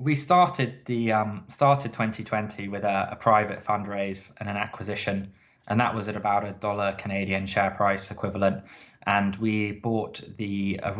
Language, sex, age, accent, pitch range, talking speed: English, male, 20-39, British, 100-115 Hz, 165 wpm